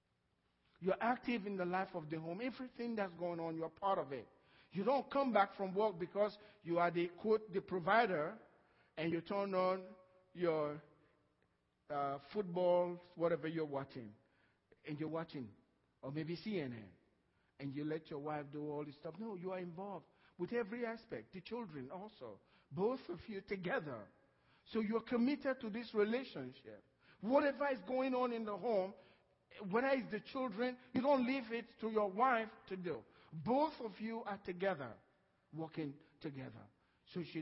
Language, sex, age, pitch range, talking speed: English, male, 50-69, 160-235 Hz, 165 wpm